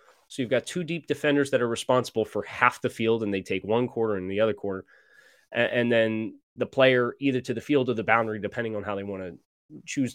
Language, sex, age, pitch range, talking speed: English, male, 20-39, 105-135 Hz, 235 wpm